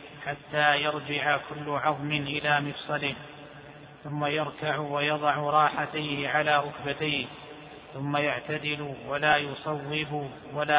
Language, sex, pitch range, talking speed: Arabic, male, 145-150 Hz, 95 wpm